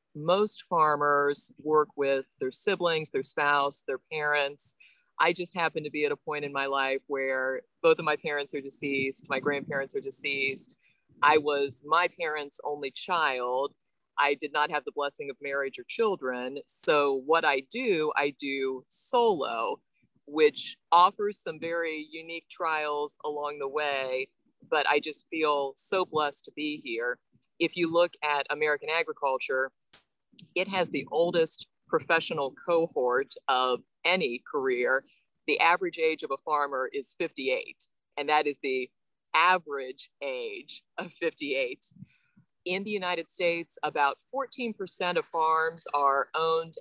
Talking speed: 145 wpm